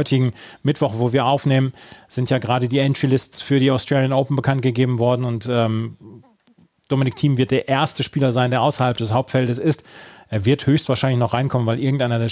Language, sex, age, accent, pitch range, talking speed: German, male, 30-49, German, 120-145 Hz, 185 wpm